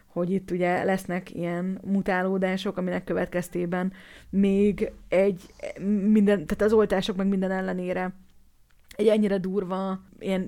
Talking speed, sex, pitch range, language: 120 wpm, female, 185-220 Hz, Hungarian